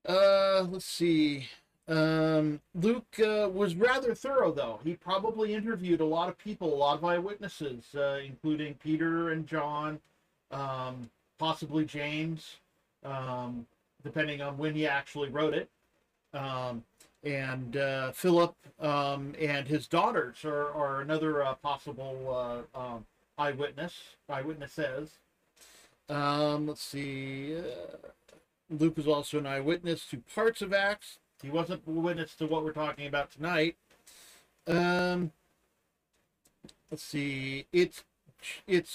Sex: male